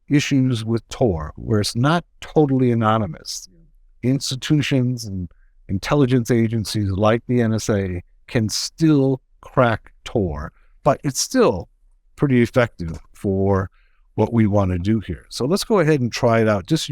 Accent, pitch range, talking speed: American, 100-130 Hz, 140 wpm